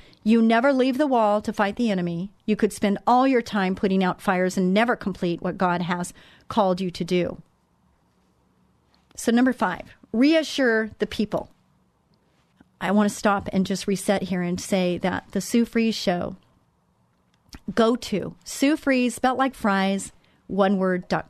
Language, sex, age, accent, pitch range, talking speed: English, female, 40-59, American, 185-225 Hz, 165 wpm